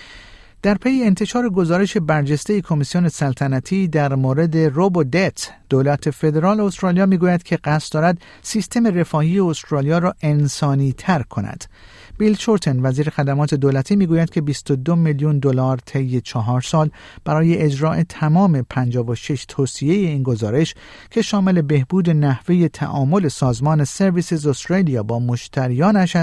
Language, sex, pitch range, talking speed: Persian, male, 135-175 Hz, 125 wpm